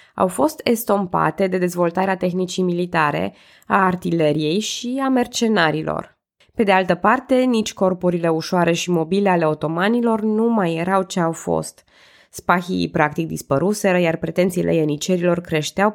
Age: 20-39